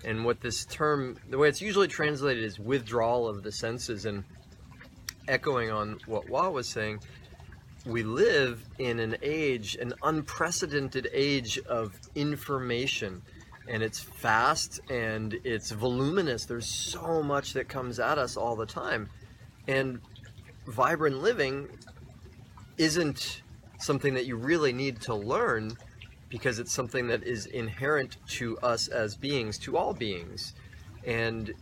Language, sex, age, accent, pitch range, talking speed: English, male, 30-49, American, 110-130 Hz, 135 wpm